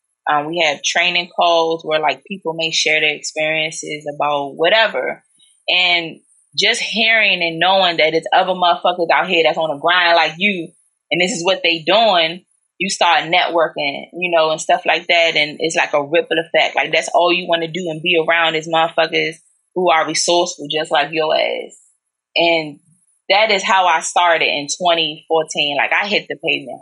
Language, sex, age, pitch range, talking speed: English, female, 20-39, 155-180 Hz, 190 wpm